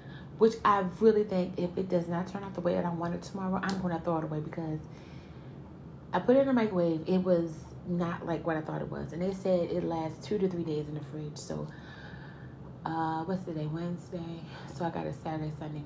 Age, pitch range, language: 30-49, 150-180 Hz, English